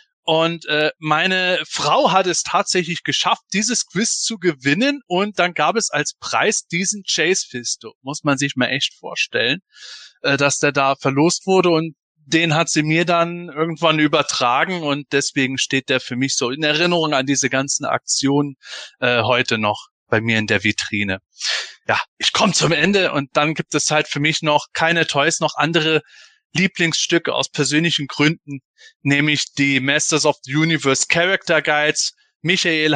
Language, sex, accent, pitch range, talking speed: German, male, German, 130-160 Hz, 165 wpm